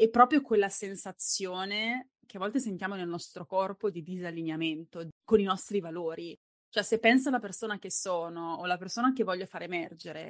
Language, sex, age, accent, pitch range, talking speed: Italian, female, 20-39, native, 175-220 Hz, 180 wpm